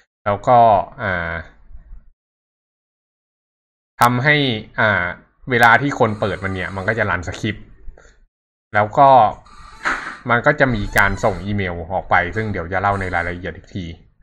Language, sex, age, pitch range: Thai, male, 20-39, 95-120 Hz